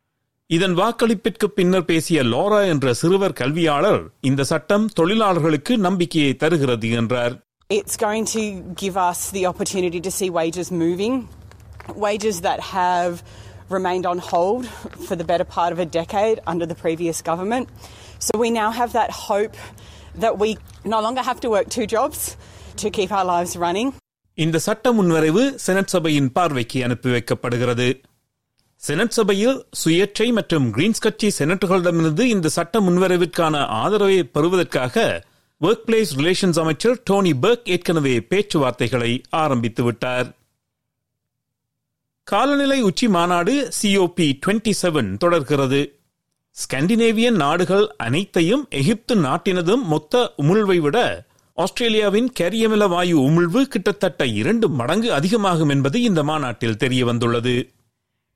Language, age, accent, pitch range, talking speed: Tamil, 30-49, native, 145-210 Hz, 70 wpm